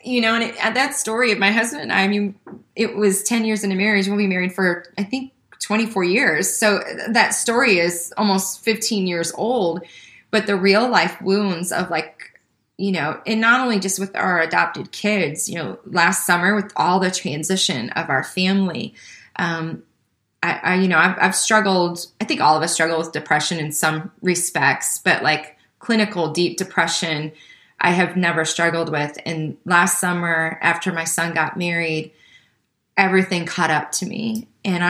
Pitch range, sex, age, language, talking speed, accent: 165-200 Hz, female, 20-39, English, 180 wpm, American